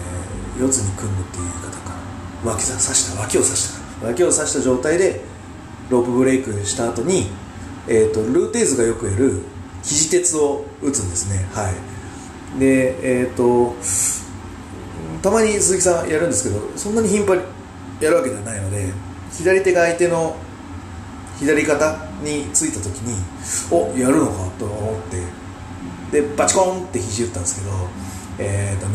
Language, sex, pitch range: Japanese, male, 90-130 Hz